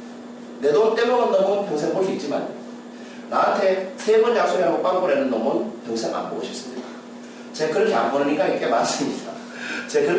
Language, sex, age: Korean, male, 40-59